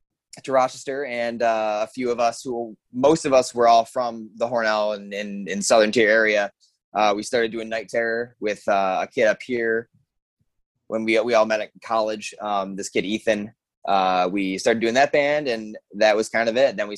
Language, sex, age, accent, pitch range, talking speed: English, male, 20-39, American, 100-115 Hz, 210 wpm